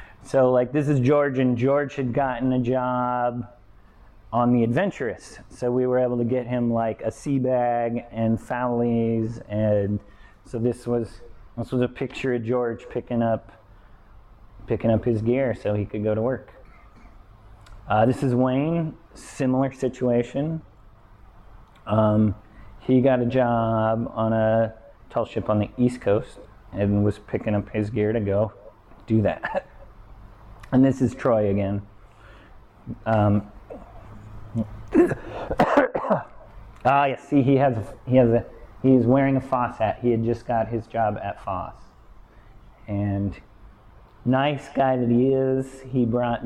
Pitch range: 105-125 Hz